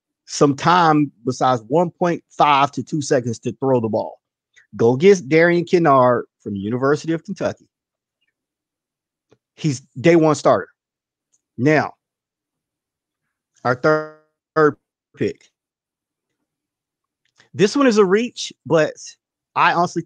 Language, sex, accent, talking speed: English, male, American, 110 wpm